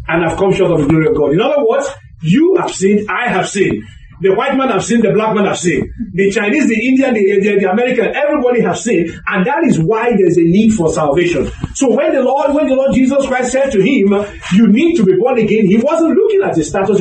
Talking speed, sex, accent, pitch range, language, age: 260 wpm, male, Nigerian, 175-245 Hz, English, 40-59